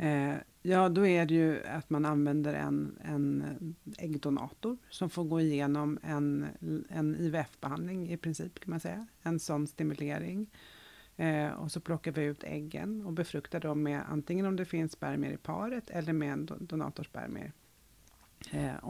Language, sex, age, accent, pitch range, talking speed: Swedish, female, 40-59, native, 145-170 Hz, 155 wpm